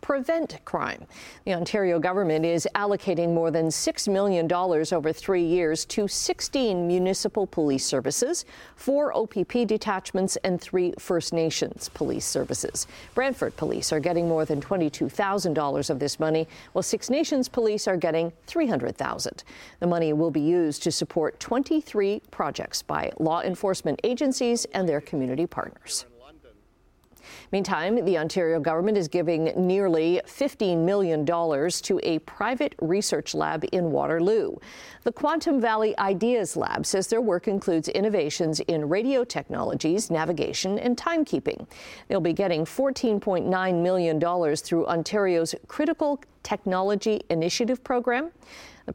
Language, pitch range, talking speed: English, 165-225 Hz, 135 wpm